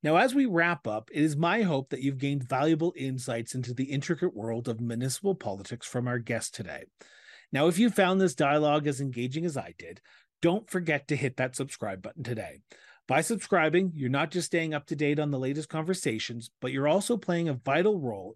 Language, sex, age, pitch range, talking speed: English, male, 40-59, 125-160 Hz, 210 wpm